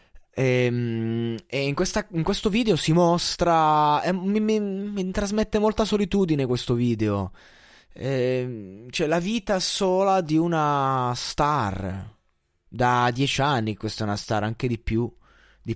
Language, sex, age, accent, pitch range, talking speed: Italian, male, 20-39, native, 115-170 Hz, 130 wpm